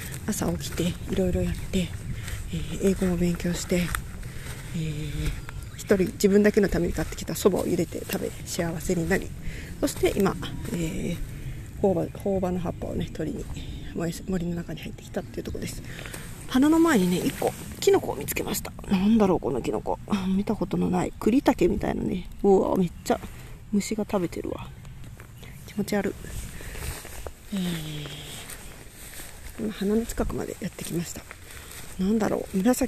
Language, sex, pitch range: Japanese, female, 155-215 Hz